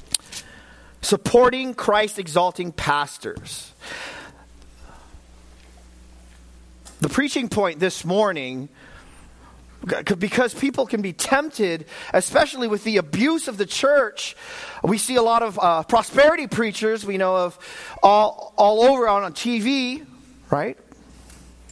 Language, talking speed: English, 110 wpm